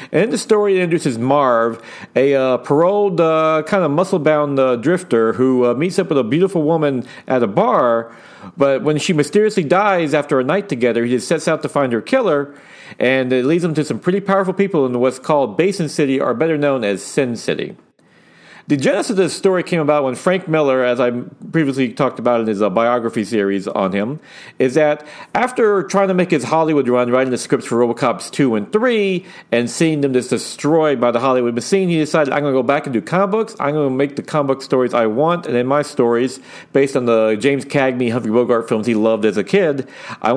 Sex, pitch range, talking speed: male, 125-165 Hz, 220 wpm